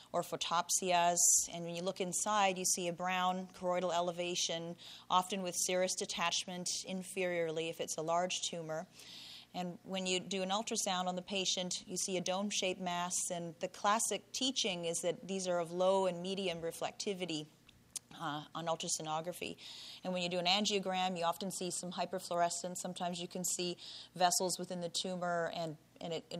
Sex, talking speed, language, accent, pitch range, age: female, 170 wpm, English, American, 175-195 Hz, 30-49